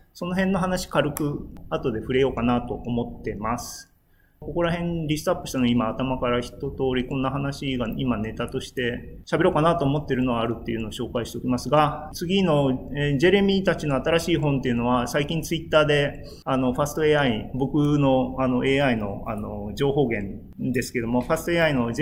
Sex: male